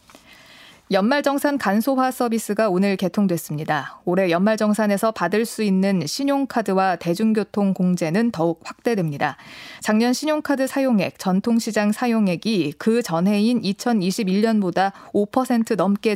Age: 20-39